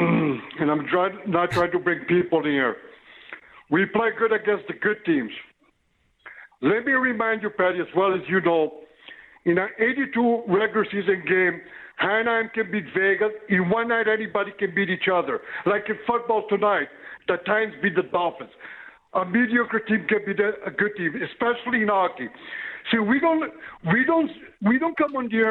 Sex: male